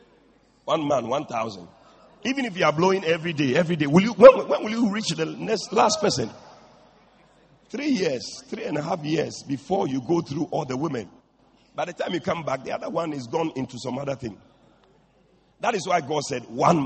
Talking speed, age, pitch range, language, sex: 205 wpm, 50-69, 175-260 Hz, English, male